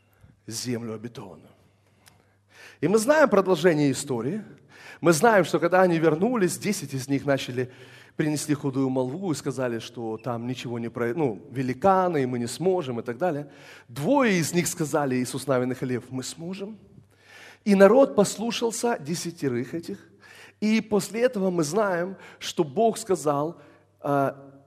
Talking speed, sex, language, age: 140 wpm, male, Russian, 30-49